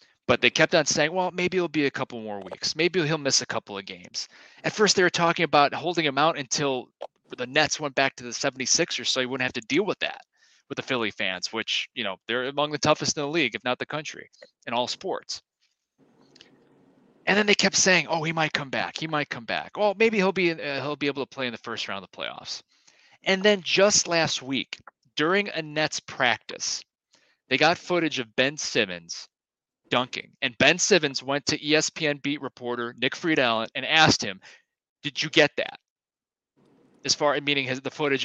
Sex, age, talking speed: male, 30-49, 215 wpm